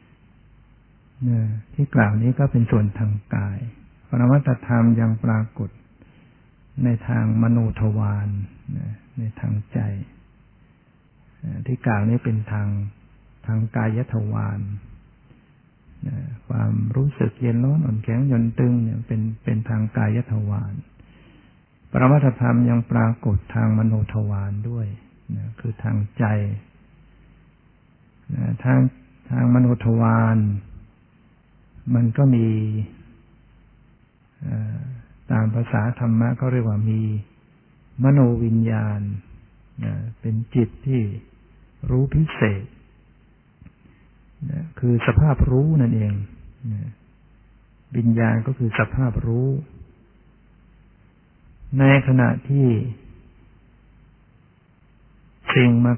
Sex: male